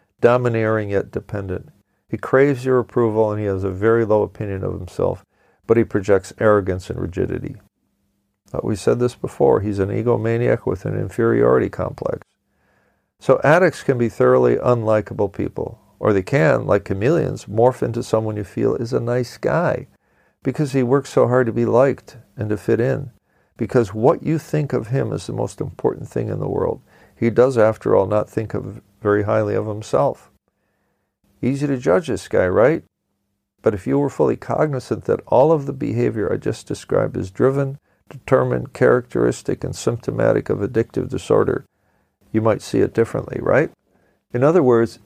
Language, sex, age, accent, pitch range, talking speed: English, male, 50-69, American, 105-130 Hz, 170 wpm